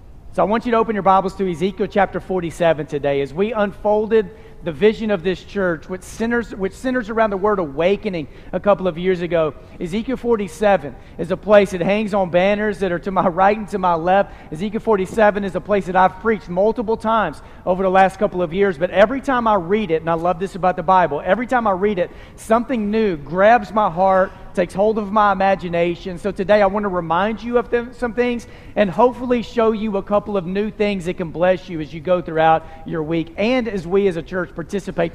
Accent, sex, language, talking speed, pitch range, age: American, male, English, 225 wpm, 180-225 Hz, 40-59